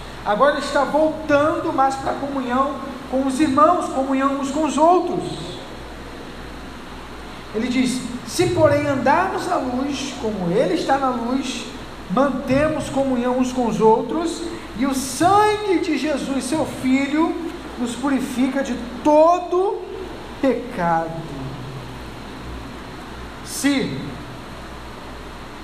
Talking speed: 110 wpm